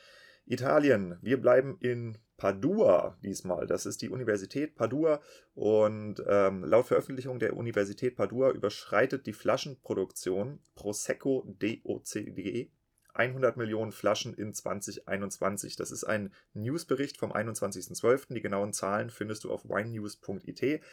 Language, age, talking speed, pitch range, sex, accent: German, 30-49, 120 wpm, 105-135 Hz, male, German